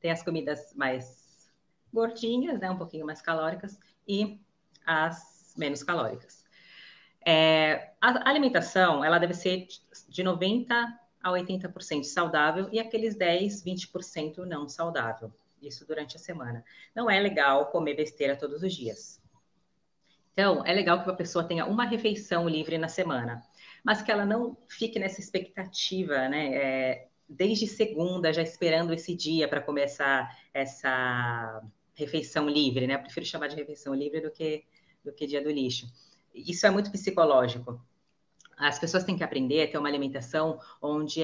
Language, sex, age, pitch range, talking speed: Portuguese, female, 30-49, 150-195 Hz, 150 wpm